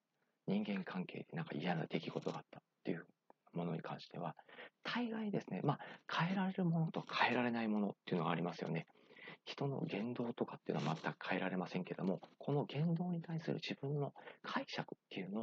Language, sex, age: Japanese, male, 40-59